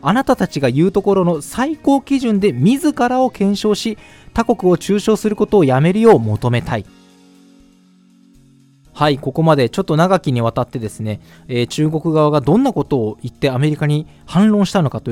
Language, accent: Japanese, native